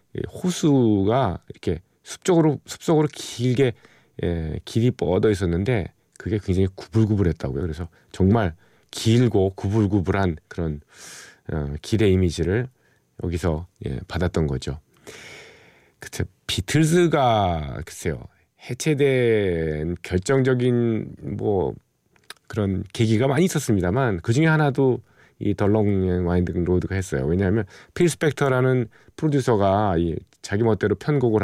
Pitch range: 95-130 Hz